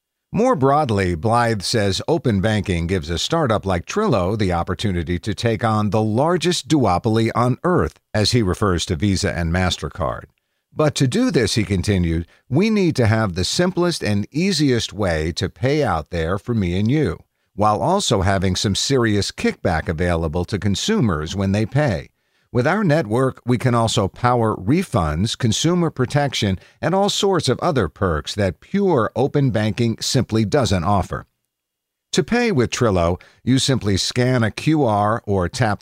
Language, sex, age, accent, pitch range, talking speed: English, male, 50-69, American, 95-130 Hz, 165 wpm